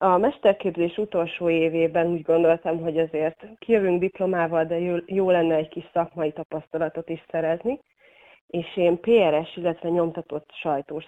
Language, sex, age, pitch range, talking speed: Hungarian, female, 30-49, 160-185 Hz, 135 wpm